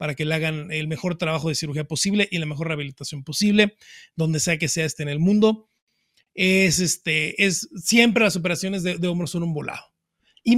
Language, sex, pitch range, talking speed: Spanish, male, 160-210 Hz, 205 wpm